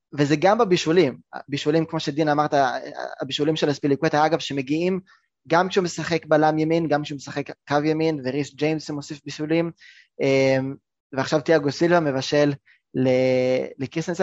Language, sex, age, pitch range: Hebrew, male, 20-39, 135-165 Hz